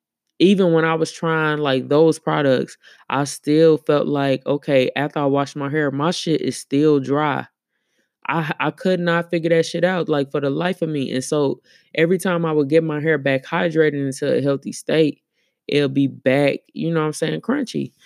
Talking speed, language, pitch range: 205 wpm, English, 135-155 Hz